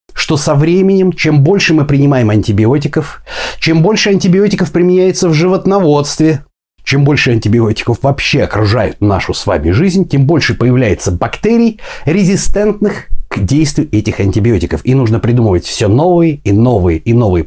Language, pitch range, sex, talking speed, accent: Russian, 115-175 Hz, male, 135 wpm, native